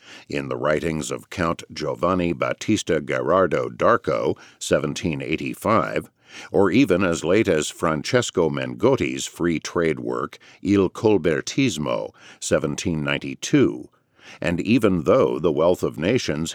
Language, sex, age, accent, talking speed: English, male, 50-69, American, 110 wpm